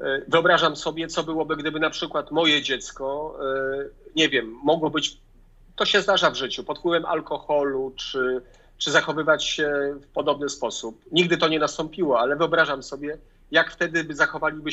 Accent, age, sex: native, 40-59, male